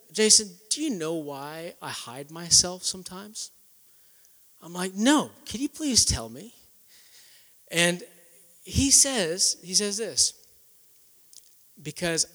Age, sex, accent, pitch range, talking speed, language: 30-49, male, American, 140-195 Hz, 115 wpm, English